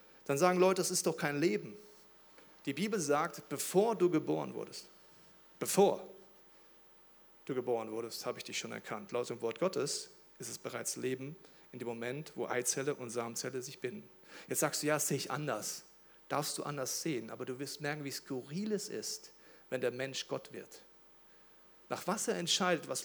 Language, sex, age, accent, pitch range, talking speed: German, male, 40-59, German, 140-180 Hz, 185 wpm